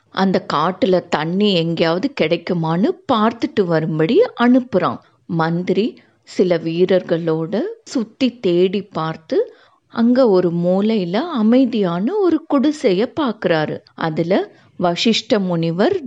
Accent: native